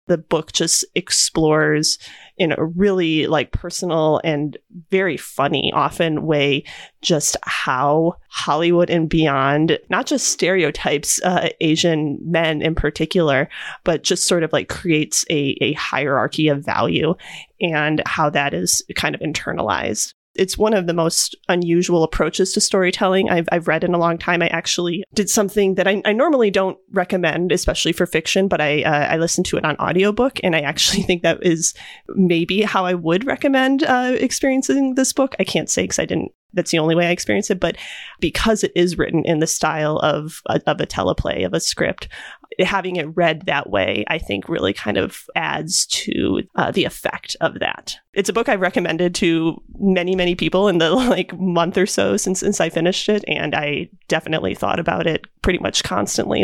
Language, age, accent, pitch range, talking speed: English, 30-49, American, 160-200 Hz, 185 wpm